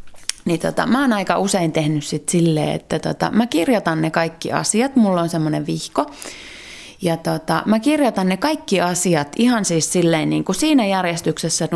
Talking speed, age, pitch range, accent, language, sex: 165 wpm, 30-49, 165-220 Hz, native, Finnish, female